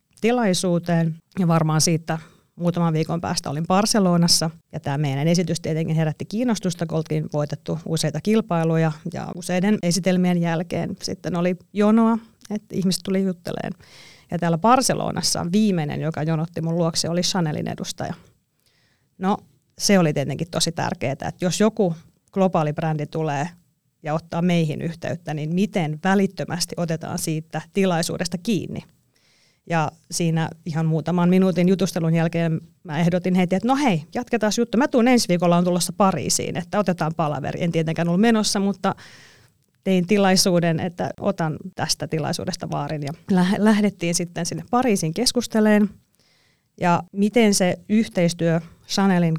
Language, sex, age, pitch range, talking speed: Finnish, female, 30-49, 160-195 Hz, 140 wpm